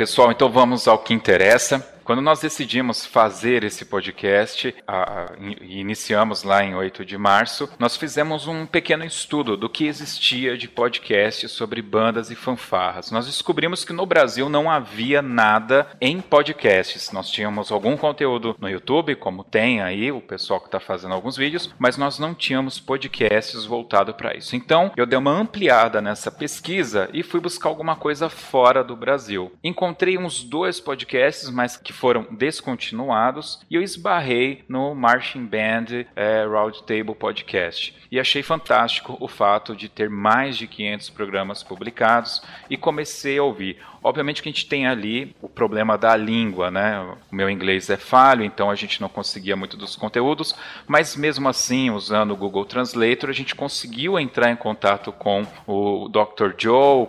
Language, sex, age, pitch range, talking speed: Portuguese, male, 30-49, 110-145 Hz, 165 wpm